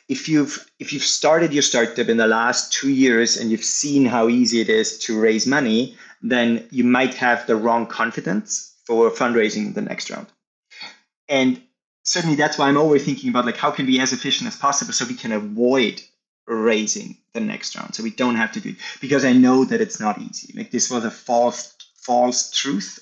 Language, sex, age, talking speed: English, male, 30-49, 210 wpm